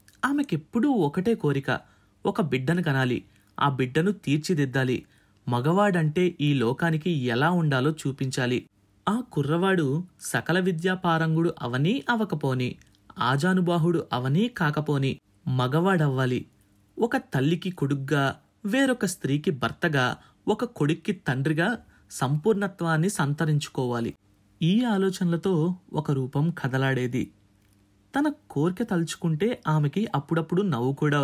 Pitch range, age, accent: 135-190 Hz, 30-49, native